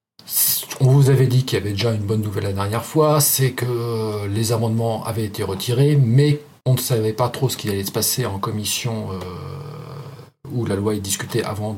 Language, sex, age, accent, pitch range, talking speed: French, male, 40-59, French, 110-135 Hz, 210 wpm